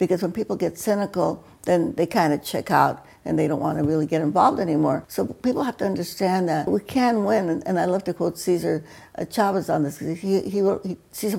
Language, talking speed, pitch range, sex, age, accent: English, 215 wpm, 175-225 Hz, female, 60-79, American